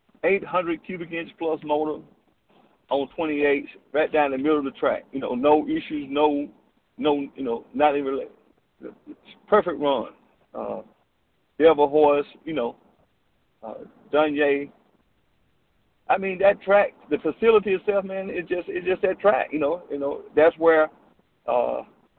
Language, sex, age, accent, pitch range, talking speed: English, male, 50-69, American, 145-190 Hz, 150 wpm